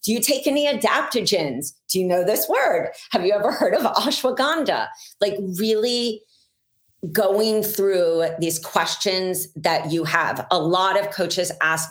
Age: 40-59